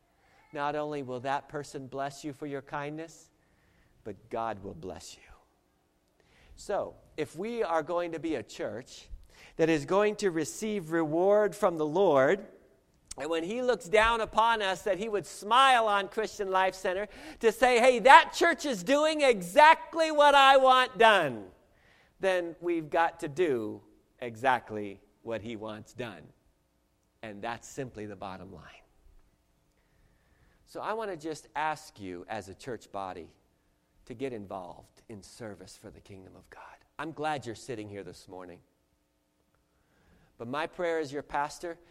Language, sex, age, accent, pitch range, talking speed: English, male, 50-69, American, 110-180 Hz, 155 wpm